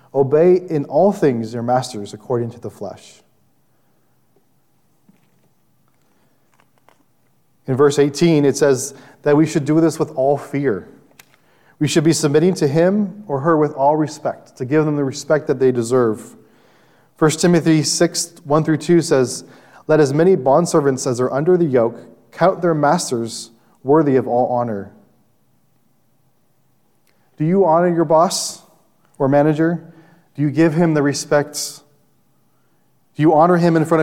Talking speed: 150 wpm